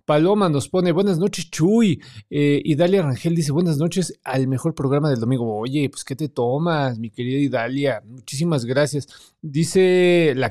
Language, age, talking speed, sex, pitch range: Spanish, 30-49, 165 wpm, male, 125-150 Hz